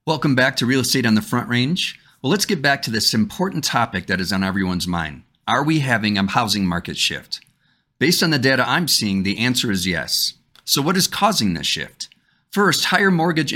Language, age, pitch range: English, 50-69, 105-145 Hz